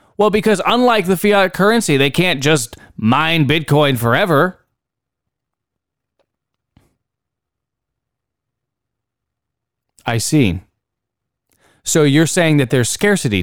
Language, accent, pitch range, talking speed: English, American, 115-175 Hz, 90 wpm